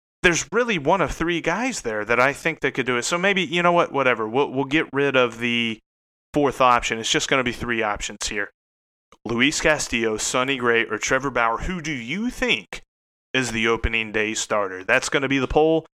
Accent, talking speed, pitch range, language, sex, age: American, 220 wpm, 115-155 Hz, English, male, 30-49